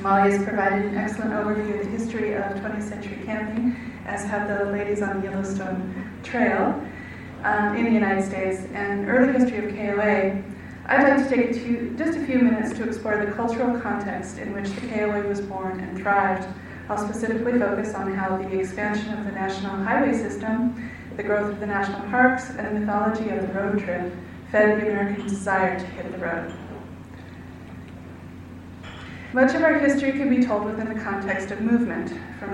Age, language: 30-49, English